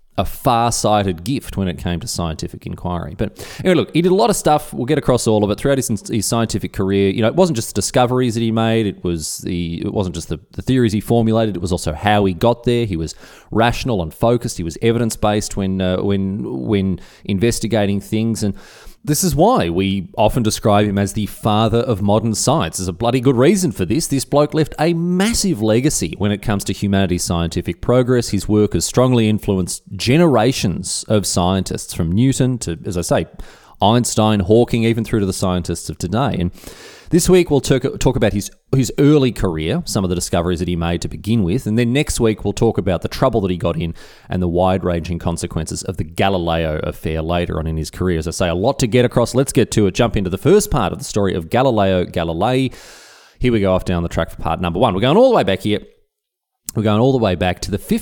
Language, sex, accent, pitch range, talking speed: English, male, Australian, 90-125 Hz, 230 wpm